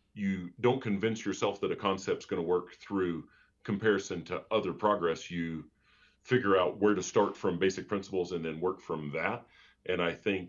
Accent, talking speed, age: American, 185 wpm, 40-59